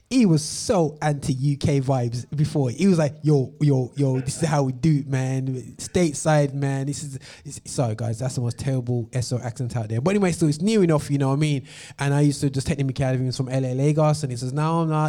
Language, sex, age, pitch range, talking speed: English, male, 20-39, 130-160 Hz, 255 wpm